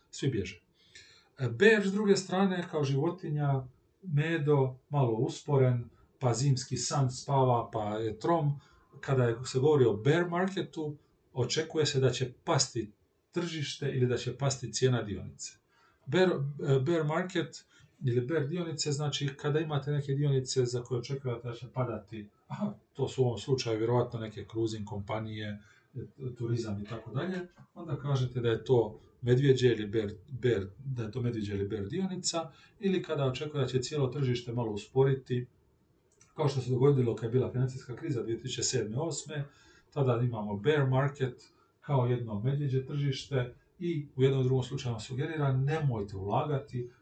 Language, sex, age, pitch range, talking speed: Croatian, male, 40-59, 120-145 Hz, 150 wpm